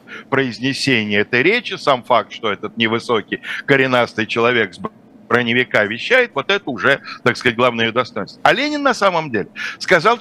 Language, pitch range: Russian, 125-195 Hz